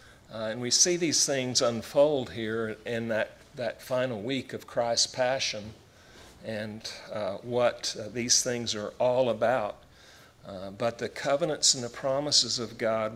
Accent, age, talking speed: American, 50-69, 155 wpm